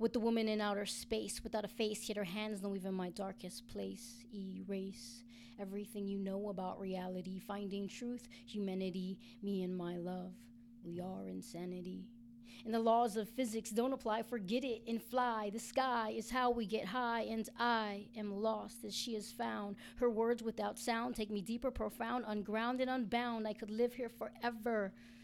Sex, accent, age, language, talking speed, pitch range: female, American, 30-49, English, 175 wpm, 205-235 Hz